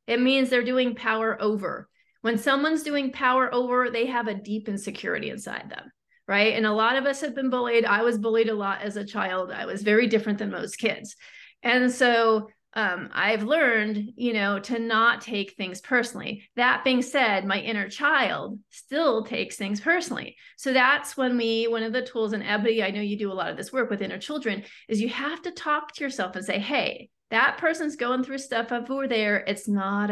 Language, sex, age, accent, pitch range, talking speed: English, female, 40-59, American, 205-260 Hz, 210 wpm